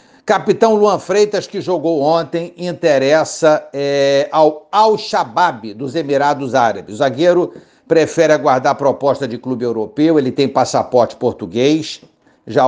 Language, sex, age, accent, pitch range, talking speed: Portuguese, male, 60-79, Brazilian, 135-170 Hz, 125 wpm